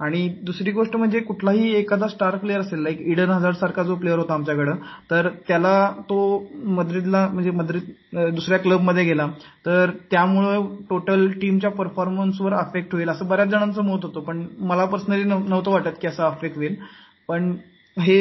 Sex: male